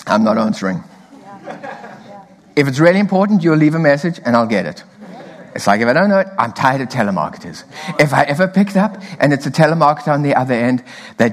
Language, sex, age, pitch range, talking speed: English, male, 60-79, 165-255 Hz, 210 wpm